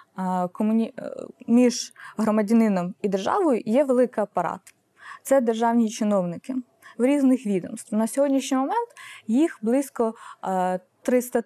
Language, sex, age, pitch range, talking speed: Ukrainian, female, 20-39, 195-240 Hz, 100 wpm